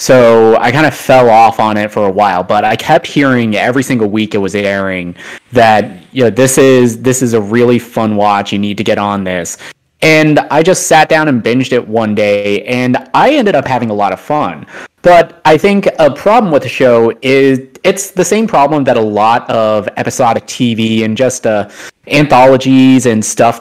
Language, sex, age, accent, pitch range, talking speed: English, male, 20-39, American, 105-135 Hz, 210 wpm